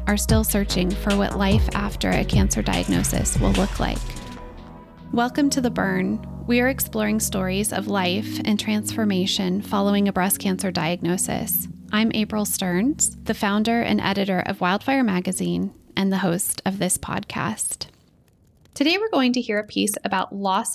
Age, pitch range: 10-29, 185-235 Hz